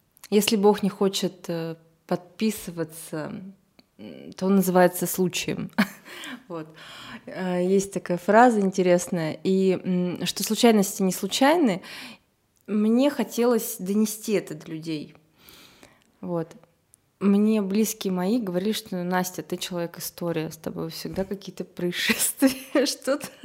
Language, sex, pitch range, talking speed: Russian, female, 175-225 Hz, 95 wpm